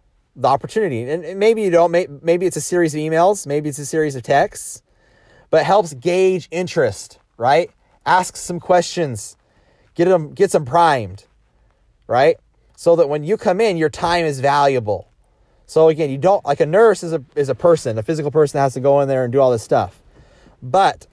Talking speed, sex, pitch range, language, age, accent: 195 wpm, male, 115-165 Hz, English, 30-49, American